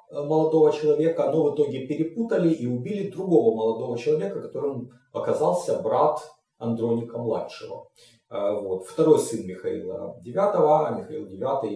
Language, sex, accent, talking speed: Russian, male, native, 110 wpm